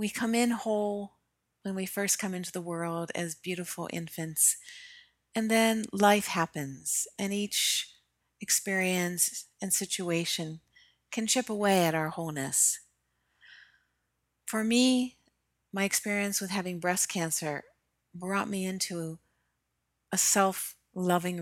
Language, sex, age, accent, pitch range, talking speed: English, female, 40-59, American, 165-205 Hz, 120 wpm